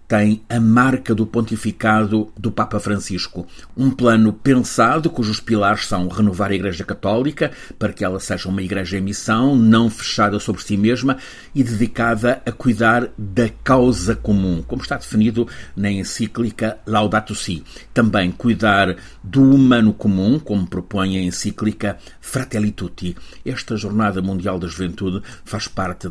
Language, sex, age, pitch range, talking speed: Portuguese, male, 50-69, 95-115 Hz, 145 wpm